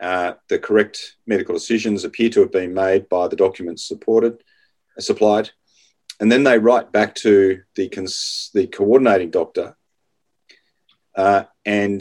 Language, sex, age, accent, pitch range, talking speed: English, male, 40-59, Australian, 100-115 Hz, 145 wpm